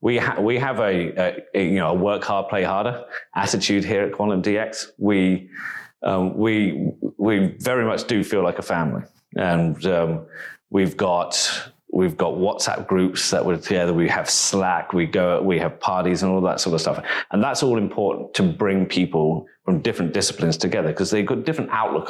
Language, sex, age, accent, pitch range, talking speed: English, male, 30-49, British, 85-100 Hz, 195 wpm